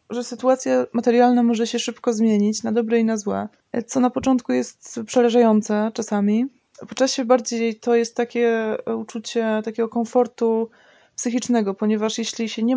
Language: Polish